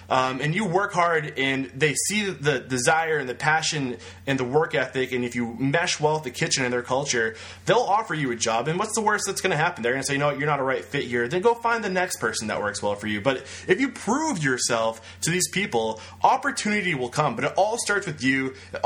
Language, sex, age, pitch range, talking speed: English, male, 20-39, 125-170 Hz, 260 wpm